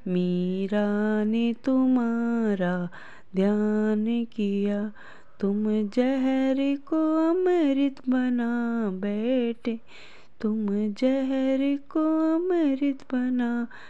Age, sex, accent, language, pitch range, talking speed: 20-39, female, native, Hindi, 210-265 Hz, 65 wpm